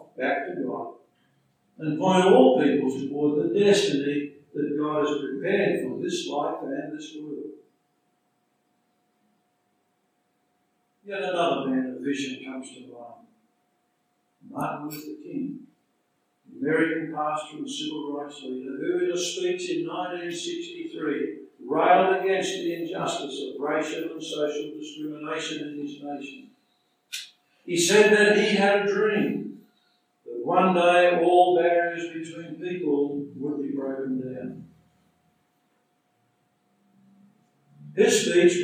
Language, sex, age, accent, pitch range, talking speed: English, male, 60-79, American, 150-195 Hz, 115 wpm